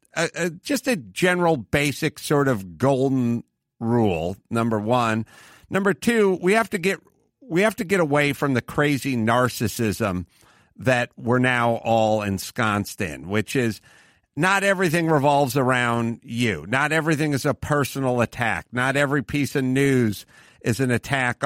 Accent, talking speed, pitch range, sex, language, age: American, 150 wpm, 125-160 Hz, male, English, 50-69